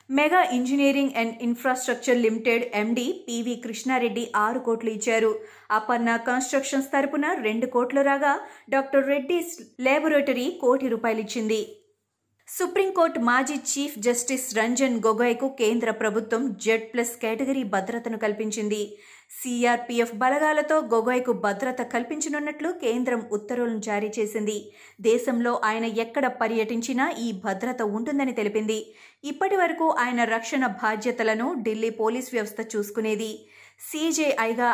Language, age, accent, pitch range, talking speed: Telugu, 30-49, native, 220-265 Hz, 105 wpm